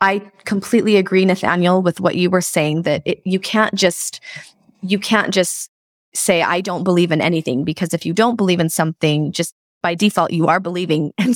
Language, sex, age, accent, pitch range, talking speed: English, female, 20-39, American, 175-205 Hz, 195 wpm